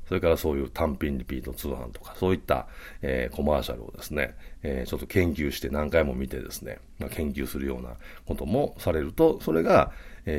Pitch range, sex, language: 65-95 Hz, male, Japanese